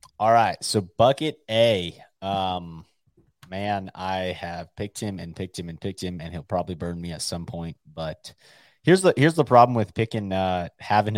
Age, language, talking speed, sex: 30-49, English, 190 wpm, male